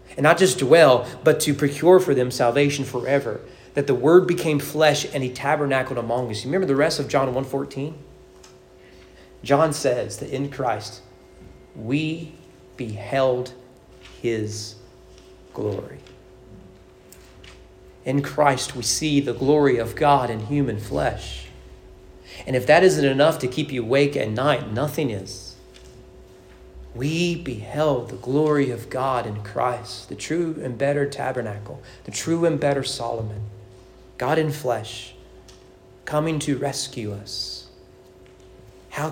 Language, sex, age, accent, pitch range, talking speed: English, male, 40-59, American, 95-145 Hz, 135 wpm